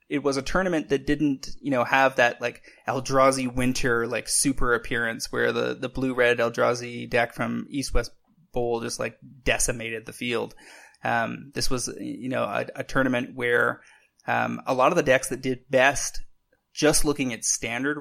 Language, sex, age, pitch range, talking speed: English, male, 20-39, 120-135 Hz, 180 wpm